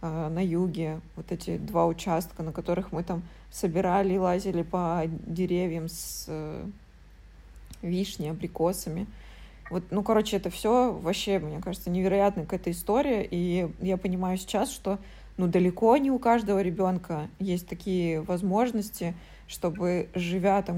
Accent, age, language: native, 20-39, Russian